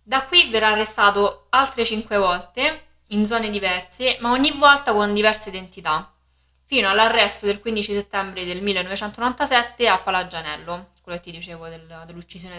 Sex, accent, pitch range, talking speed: female, native, 175-215 Hz, 145 wpm